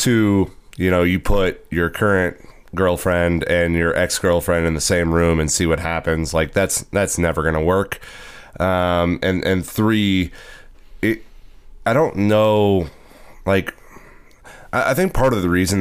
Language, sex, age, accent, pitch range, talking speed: English, male, 30-49, American, 80-90 Hz, 160 wpm